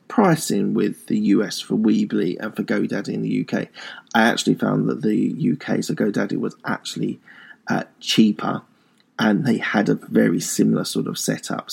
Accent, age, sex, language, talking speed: British, 20-39, male, English, 170 wpm